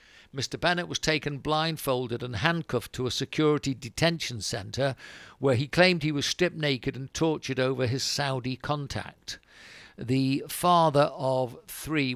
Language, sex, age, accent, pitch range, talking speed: English, male, 50-69, British, 125-150 Hz, 145 wpm